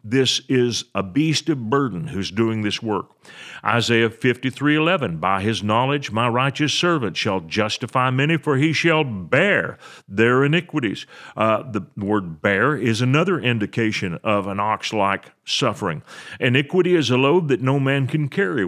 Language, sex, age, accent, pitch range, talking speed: English, male, 50-69, American, 110-150 Hz, 150 wpm